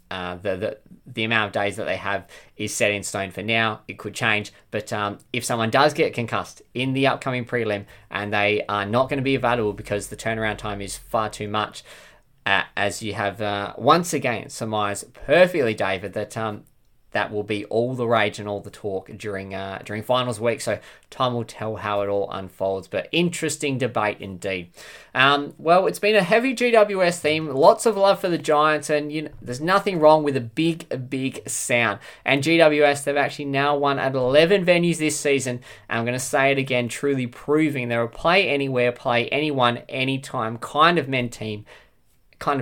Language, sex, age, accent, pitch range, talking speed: English, male, 20-39, Australian, 105-150 Hz, 200 wpm